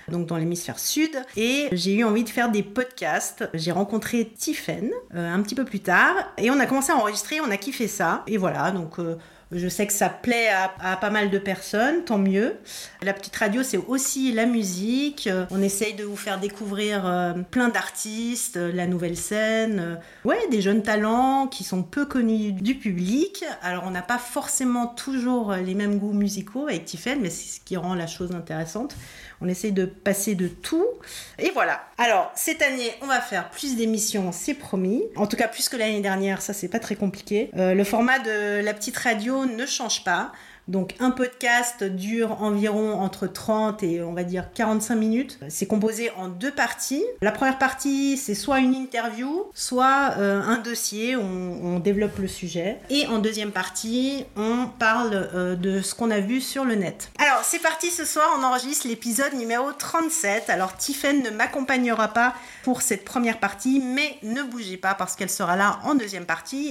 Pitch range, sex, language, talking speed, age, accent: 195-255 Hz, female, French, 195 wpm, 40-59, French